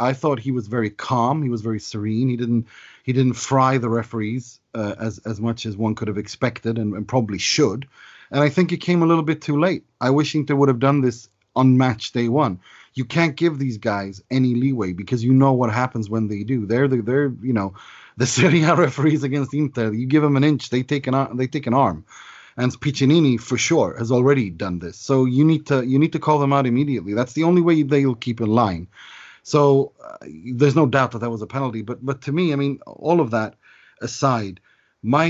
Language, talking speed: English, 235 wpm